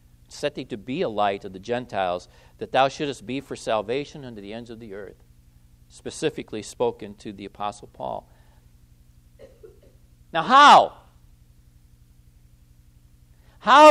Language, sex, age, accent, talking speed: English, male, 60-79, American, 130 wpm